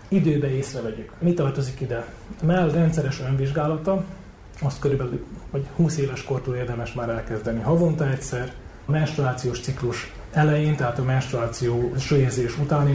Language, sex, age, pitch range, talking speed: Hungarian, male, 30-49, 130-155 Hz, 130 wpm